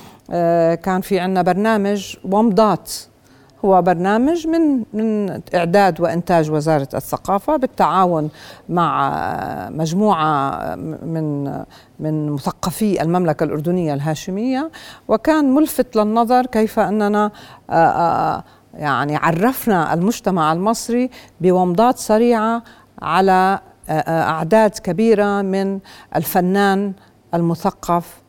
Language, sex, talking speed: Arabic, female, 85 wpm